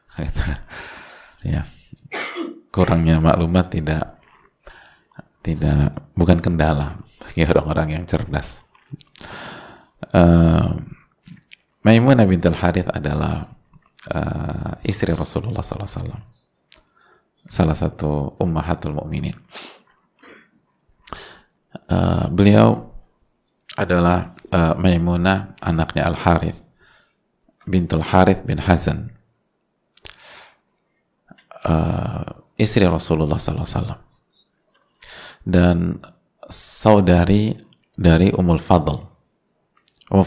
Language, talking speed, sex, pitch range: Indonesian, 70 wpm, male, 80-95 Hz